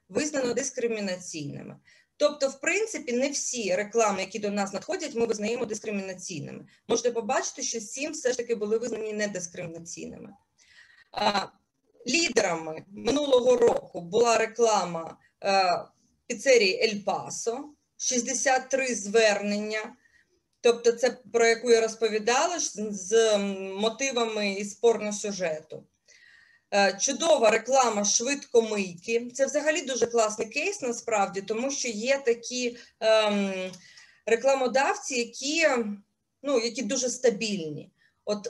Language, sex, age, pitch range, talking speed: Ukrainian, female, 20-39, 205-265 Hz, 105 wpm